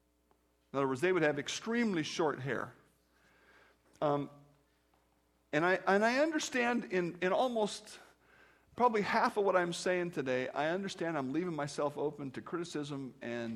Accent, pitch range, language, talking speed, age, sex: American, 125-205 Hz, English, 150 wpm, 50-69, male